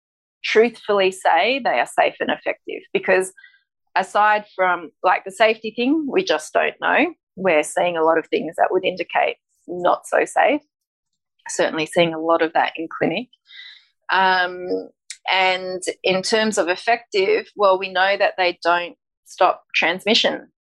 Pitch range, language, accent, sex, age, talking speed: 175-275 Hz, English, Australian, female, 20-39, 150 wpm